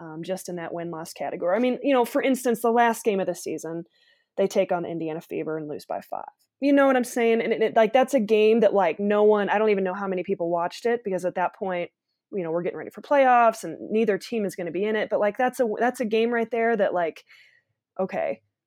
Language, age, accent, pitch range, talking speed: English, 20-39, American, 180-230 Hz, 260 wpm